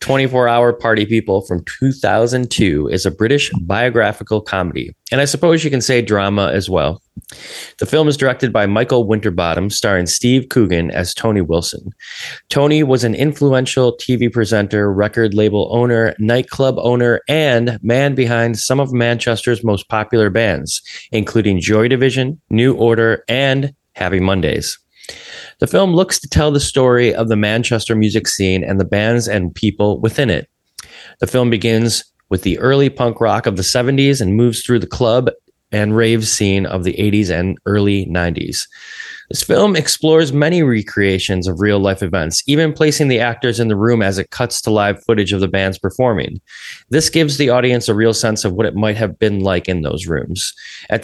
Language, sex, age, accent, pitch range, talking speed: English, male, 20-39, American, 100-130 Hz, 175 wpm